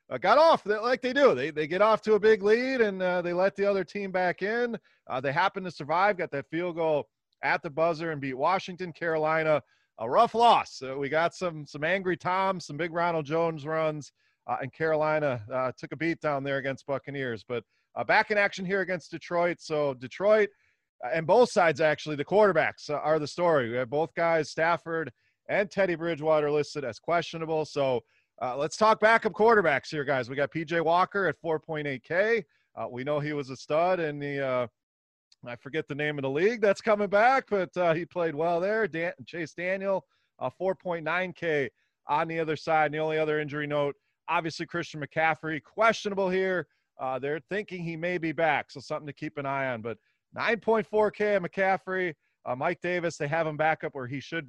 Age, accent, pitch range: 30-49, American, 145-190 Hz